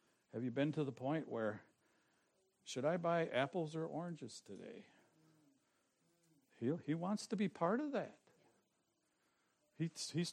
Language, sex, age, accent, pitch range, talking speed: English, male, 60-79, American, 135-185 Hz, 140 wpm